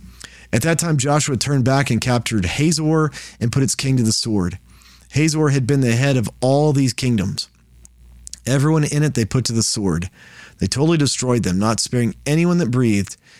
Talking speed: 190 wpm